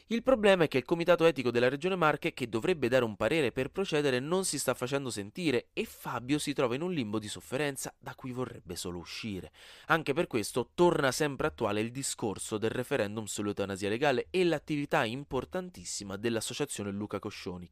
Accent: native